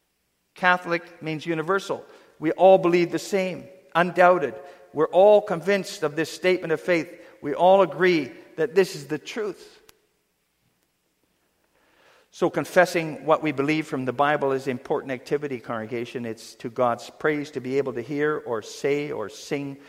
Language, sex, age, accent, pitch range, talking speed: English, male, 50-69, American, 155-220 Hz, 150 wpm